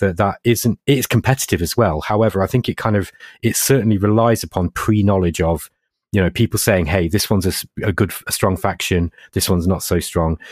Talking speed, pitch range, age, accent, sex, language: 215 wpm, 85-115 Hz, 30-49, British, male, English